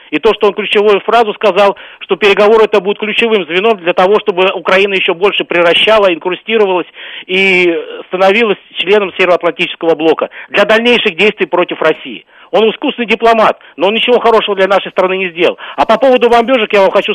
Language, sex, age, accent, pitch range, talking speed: Russian, male, 50-69, native, 190-225 Hz, 175 wpm